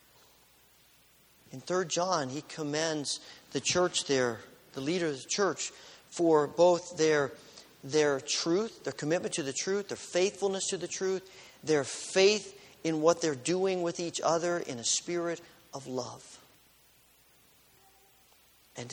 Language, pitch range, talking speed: English, 150-195 Hz, 135 wpm